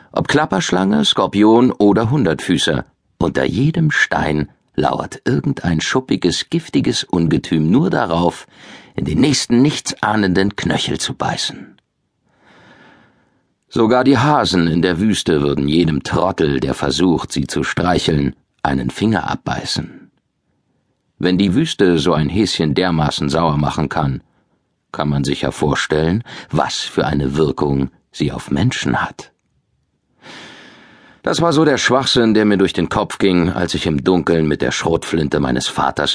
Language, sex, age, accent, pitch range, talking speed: German, male, 50-69, German, 75-105 Hz, 135 wpm